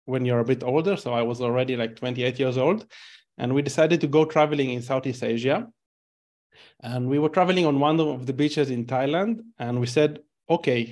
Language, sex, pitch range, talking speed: English, male, 125-155 Hz, 205 wpm